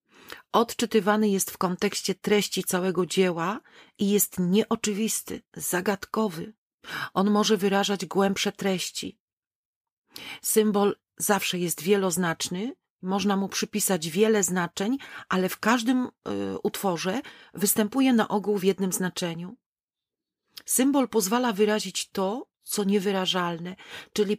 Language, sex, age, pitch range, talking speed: Polish, female, 40-59, 185-215 Hz, 105 wpm